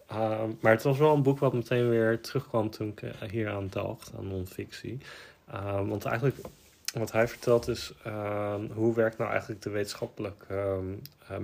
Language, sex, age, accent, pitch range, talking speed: Dutch, male, 20-39, Dutch, 95-115 Hz, 175 wpm